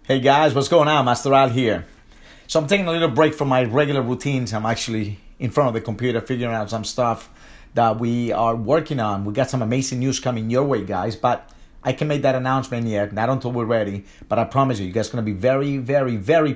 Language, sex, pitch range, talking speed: English, male, 120-155 Hz, 245 wpm